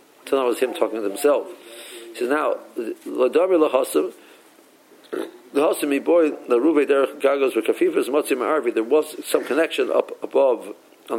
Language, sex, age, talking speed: English, male, 60-79, 95 wpm